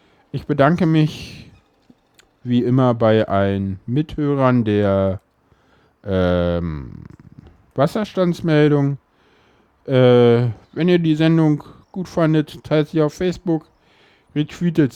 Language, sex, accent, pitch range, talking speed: German, male, German, 105-145 Hz, 90 wpm